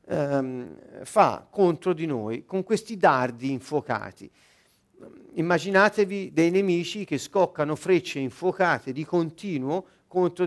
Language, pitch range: Italian, 135-195 Hz